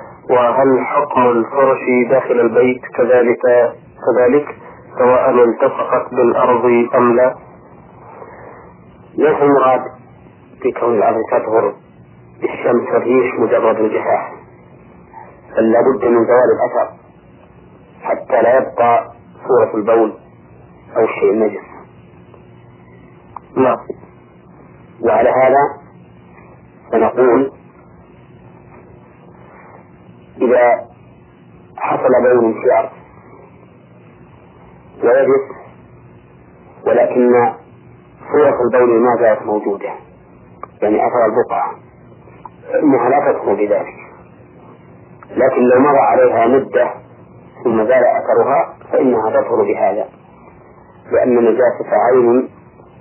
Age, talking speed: 40-59, 80 wpm